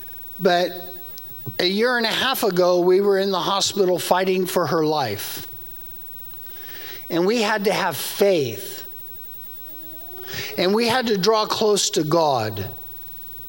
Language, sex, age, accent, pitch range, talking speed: English, male, 50-69, American, 135-215 Hz, 135 wpm